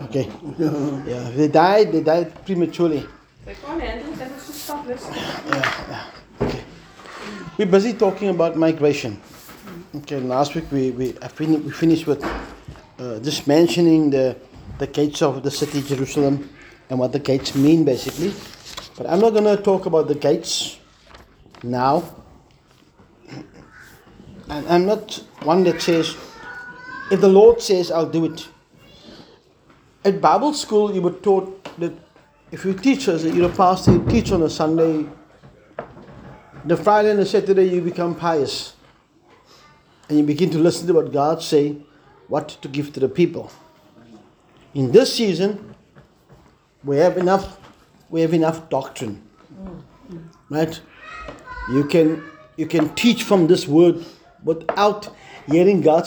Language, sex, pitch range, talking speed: English, male, 145-190 Hz, 140 wpm